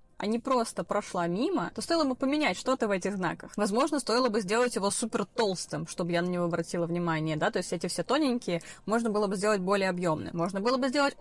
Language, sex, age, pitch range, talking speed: Russian, female, 20-39, 180-245 Hz, 225 wpm